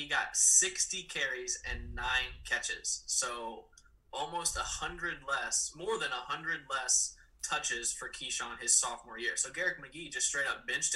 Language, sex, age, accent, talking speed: English, male, 20-39, American, 165 wpm